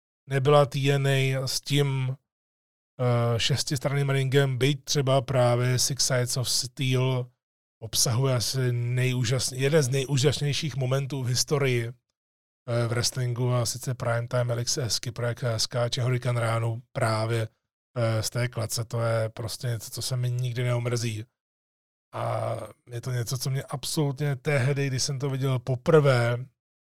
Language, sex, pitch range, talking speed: Czech, male, 120-140 Hz, 135 wpm